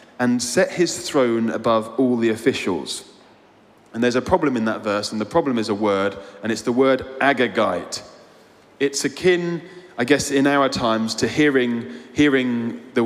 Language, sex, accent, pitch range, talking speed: English, male, British, 110-140 Hz, 170 wpm